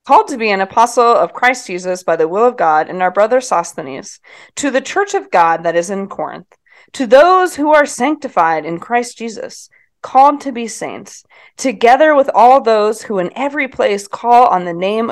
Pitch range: 195-265 Hz